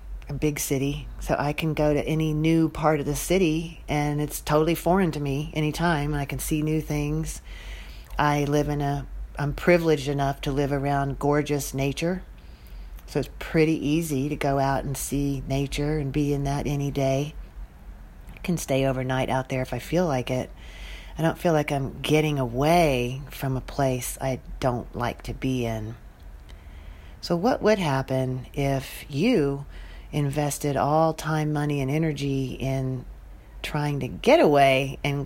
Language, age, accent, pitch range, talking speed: English, 40-59, American, 130-155 Hz, 170 wpm